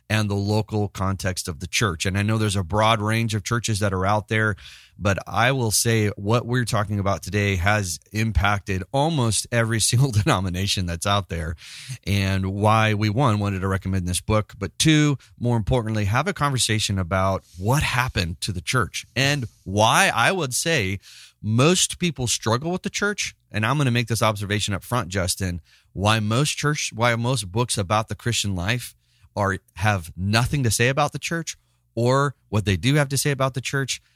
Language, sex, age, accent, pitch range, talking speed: English, male, 30-49, American, 95-120 Hz, 190 wpm